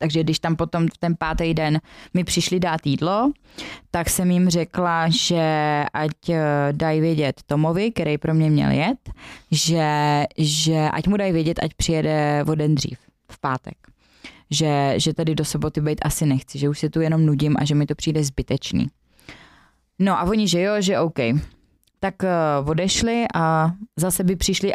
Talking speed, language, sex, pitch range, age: 175 wpm, Czech, female, 155-190 Hz, 20-39